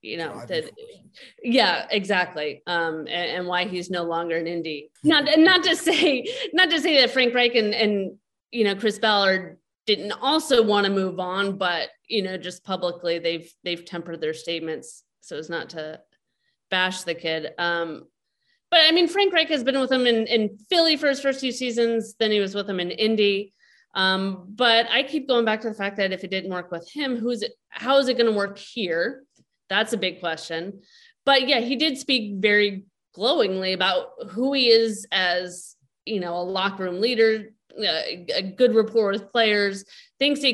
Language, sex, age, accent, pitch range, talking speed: English, female, 30-49, American, 180-250 Hz, 195 wpm